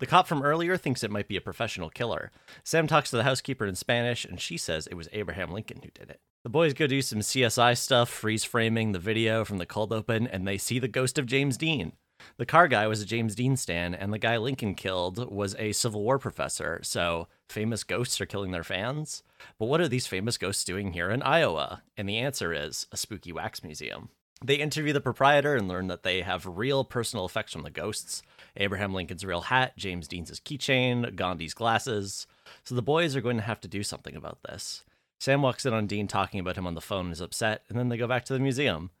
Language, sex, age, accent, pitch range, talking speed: English, male, 30-49, American, 100-135 Hz, 230 wpm